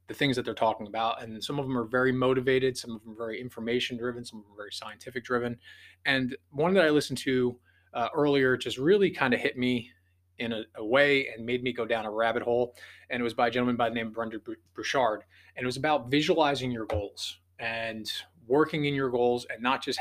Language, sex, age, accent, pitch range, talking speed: English, male, 20-39, American, 110-130 Hz, 240 wpm